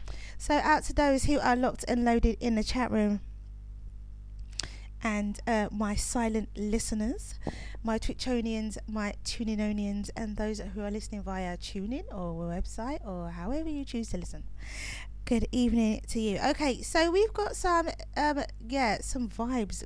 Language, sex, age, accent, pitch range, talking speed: English, female, 20-39, British, 185-255 Hz, 150 wpm